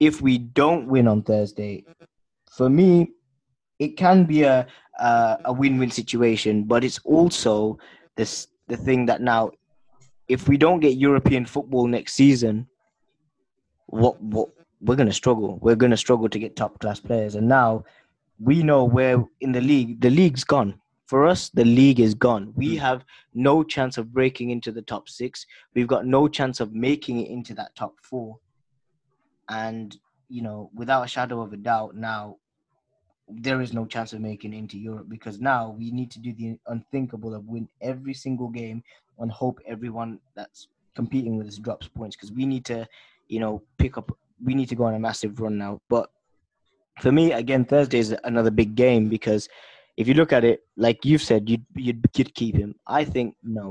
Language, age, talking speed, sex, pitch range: English, 20-39, 190 wpm, male, 110-135 Hz